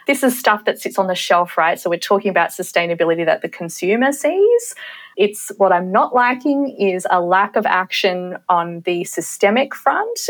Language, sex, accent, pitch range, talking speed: English, female, Australian, 175-245 Hz, 185 wpm